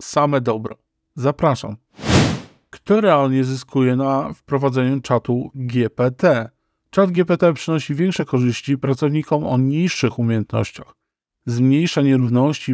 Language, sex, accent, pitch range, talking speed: Polish, male, native, 130-155 Hz, 100 wpm